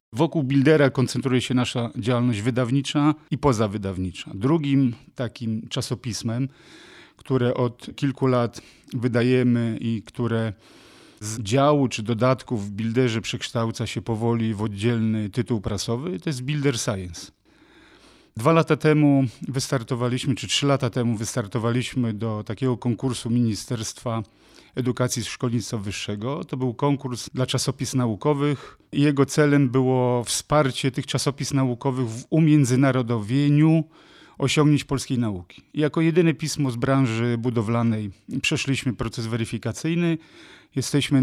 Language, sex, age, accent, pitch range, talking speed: Polish, male, 40-59, native, 115-140 Hz, 120 wpm